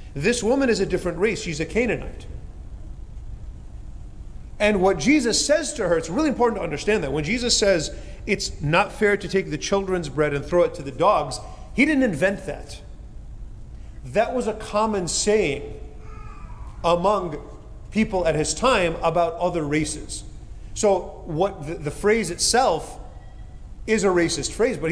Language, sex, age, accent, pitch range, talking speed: English, male, 40-59, American, 140-205 Hz, 160 wpm